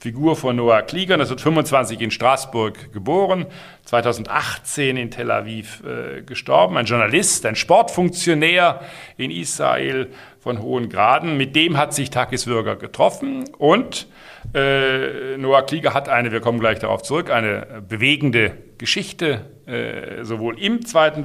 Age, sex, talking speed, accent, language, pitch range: 50-69, male, 135 wpm, German, German, 120-160 Hz